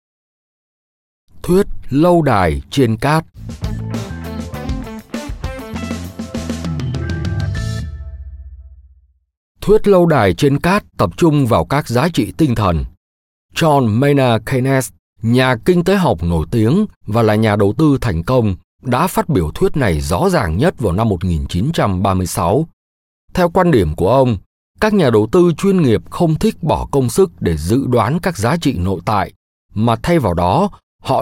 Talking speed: 140 wpm